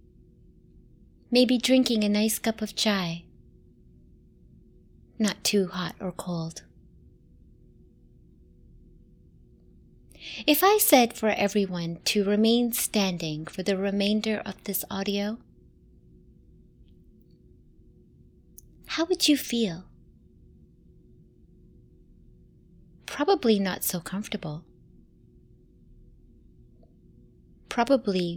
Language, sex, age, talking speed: English, female, 20-39, 75 wpm